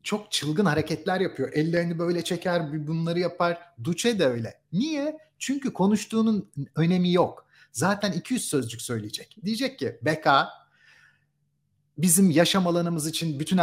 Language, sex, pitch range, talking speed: Turkish, male, 145-190 Hz, 130 wpm